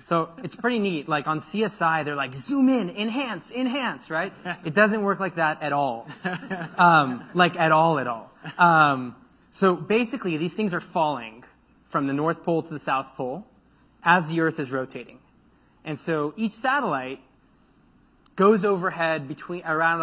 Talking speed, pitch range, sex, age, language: 165 wpm, 145-185 Hz, male, 30-49, English